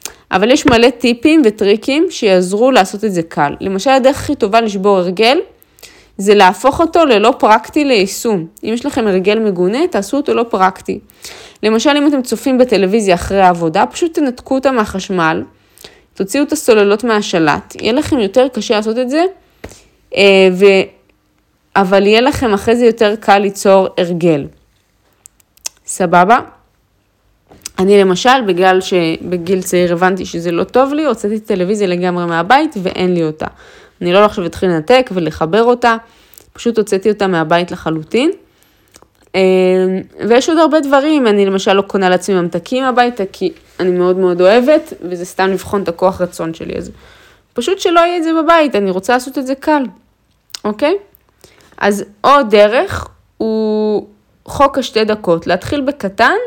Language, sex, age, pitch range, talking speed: Hebrew, female, 20-39, 185-260 Hz, 150 wpm